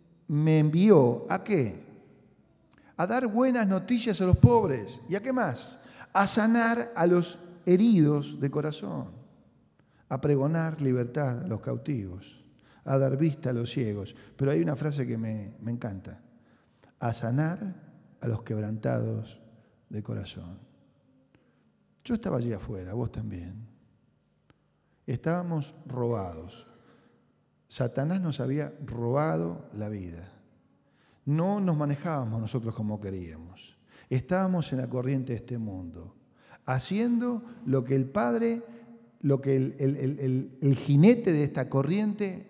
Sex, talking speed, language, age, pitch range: male, 130 wpm, Spanish, 40-59, 120-175 Hz